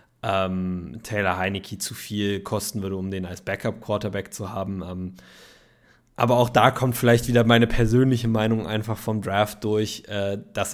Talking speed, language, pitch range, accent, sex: 145 wpm, German, 95-105 Hz, German, male